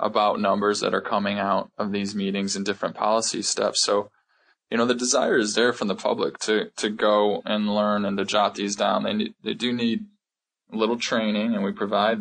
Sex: male